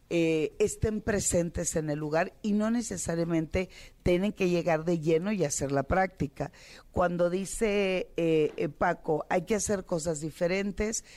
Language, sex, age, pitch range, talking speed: Spanish, female, 40-59, 150-185 Hz, 150 wpm